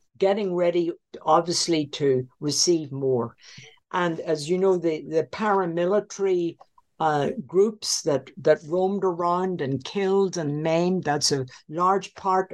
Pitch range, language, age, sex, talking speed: 160-205 Hz, English, 60-79, female, 130 wpm